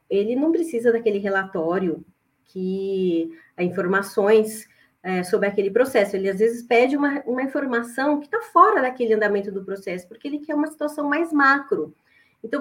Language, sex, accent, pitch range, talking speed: Portuguese, female, Brazilian, 190-270 Hz, 155 wpm